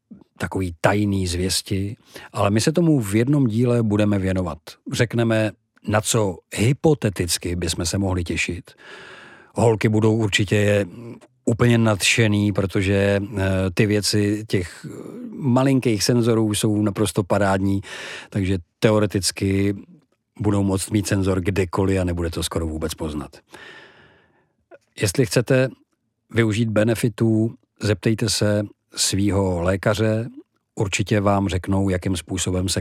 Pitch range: 90-115 Hz